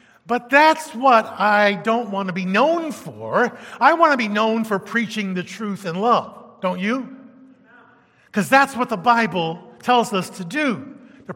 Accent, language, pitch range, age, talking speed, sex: American, English, 195-250 Hz, 50-69, 175 wpm, male